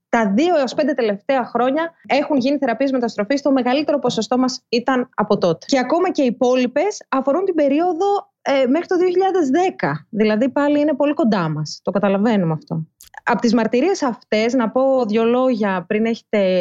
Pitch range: 205-270 Hz